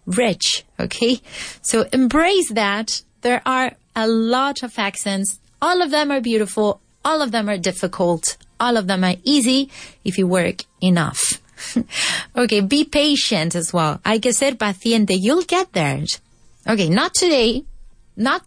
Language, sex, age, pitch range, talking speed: English, female, 30-49, 195-270 Hz, 150 wpm